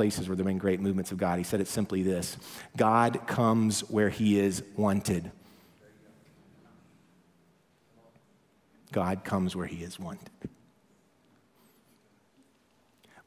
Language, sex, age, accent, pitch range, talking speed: English, male, 40-59, American, 95-105 Hz, 120 wpm